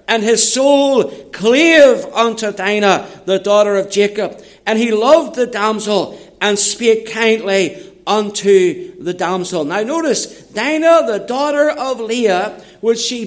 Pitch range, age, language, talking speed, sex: 215-260 Hz, 60-79, English, 135 wpm, male